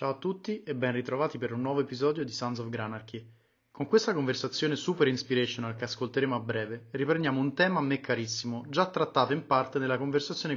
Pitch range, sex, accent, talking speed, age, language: 120-150 Hz, male, native, 200 wpm, 30-49, Italian